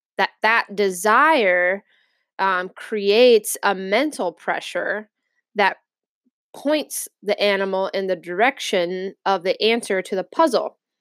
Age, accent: 20-39, American